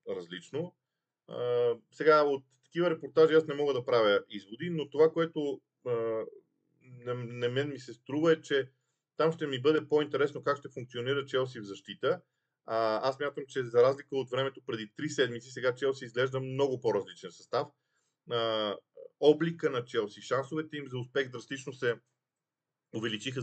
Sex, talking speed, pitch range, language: male, 155 wpm, 125-155 Hz, Bulgarian